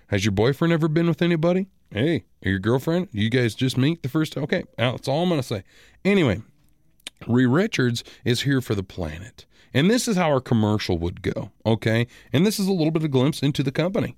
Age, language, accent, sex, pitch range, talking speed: 40-59, English, American, male, 105-145 Hz, 225 wpm